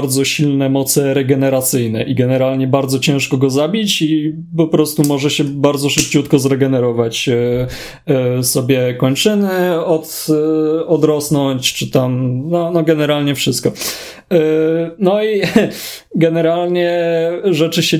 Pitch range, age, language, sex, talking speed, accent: 135-160 Hz, 20-39, Polish, male, 110 wpm, native